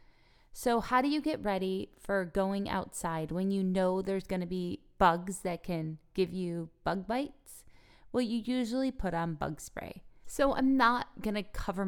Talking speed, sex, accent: 180 wpm, female, American